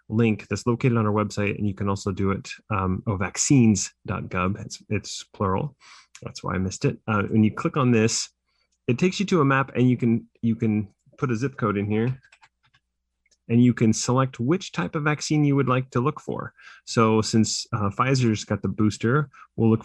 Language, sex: English, male